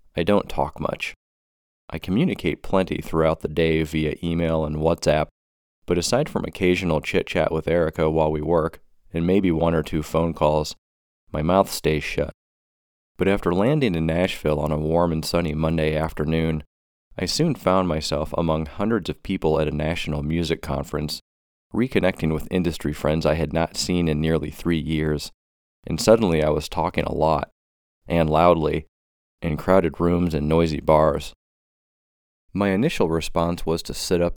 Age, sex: 30-49, male